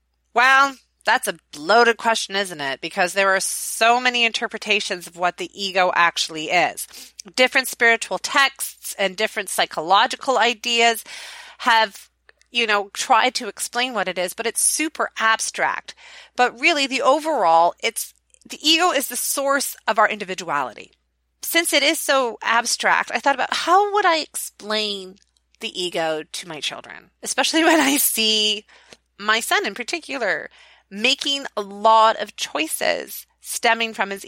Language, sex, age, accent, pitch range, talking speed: English, female, 30-49, American, 195-260 Hz, 150 wpm